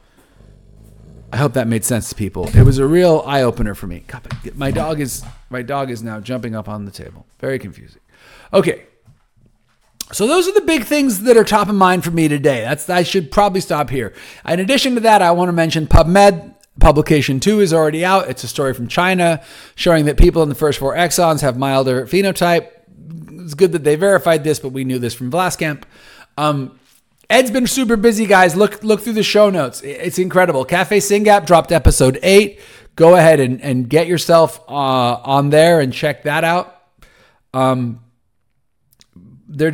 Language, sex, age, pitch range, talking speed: English, male, 40-59, 135-190 Hz, 190 wpm